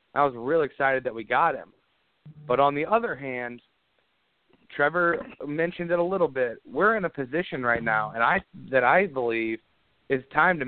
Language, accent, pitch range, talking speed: English, American, 120-150 Hz, 185 wpm